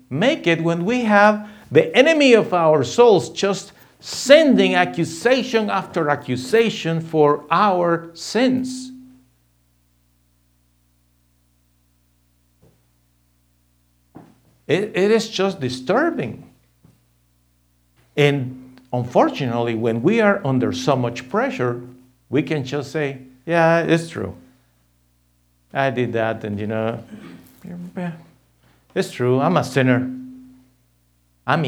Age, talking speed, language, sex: 50-69, 100 wpm, English, male